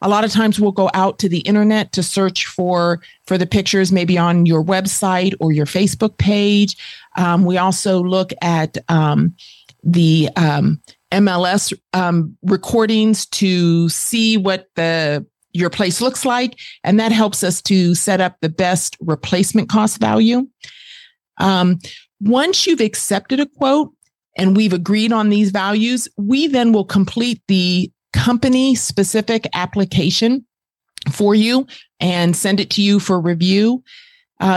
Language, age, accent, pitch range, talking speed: English, 40-59, American, 180-220 Hz, 150 wpm